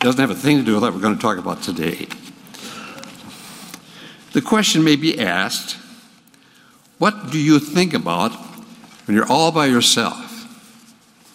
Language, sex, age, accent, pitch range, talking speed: English, male, 60-79, American, 165-240 Hz, 155 wpm